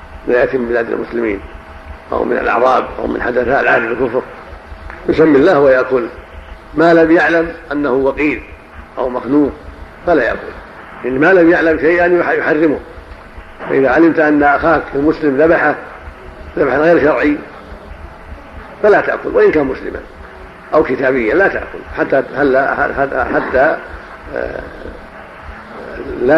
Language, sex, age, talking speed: Arabic, male, 50-69, 115 wpm